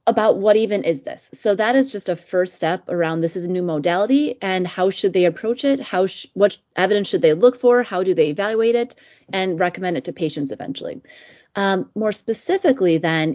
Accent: American